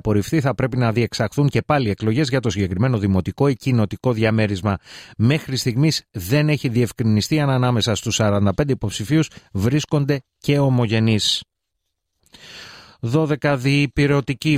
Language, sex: Greek, male